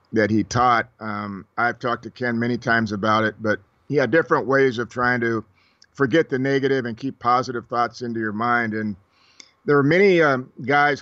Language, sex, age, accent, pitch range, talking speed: English, male, 50-69, American, 115-130 Hz, 195 wpm